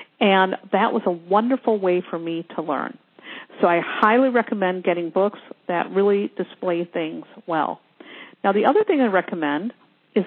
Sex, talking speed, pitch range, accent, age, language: female, 165 wpm, 185-240 Hz, American, 50-69, English